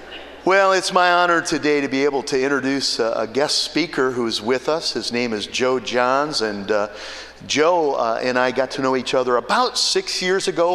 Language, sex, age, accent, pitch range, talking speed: English, male, 50-69, American, 110-135 Hz, 200 wpm